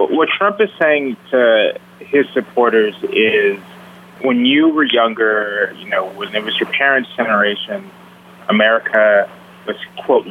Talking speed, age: 135 wpm, 20-39